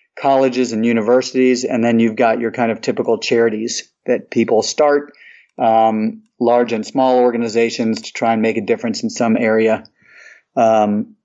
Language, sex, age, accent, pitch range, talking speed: English, male, 30-49, American, 115-130 Hz, 160 wpm